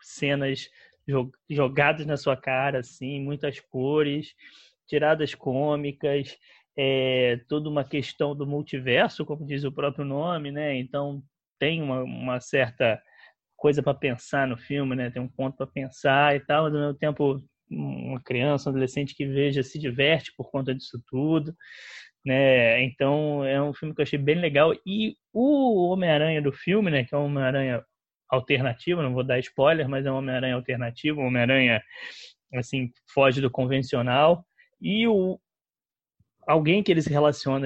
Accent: Brazilian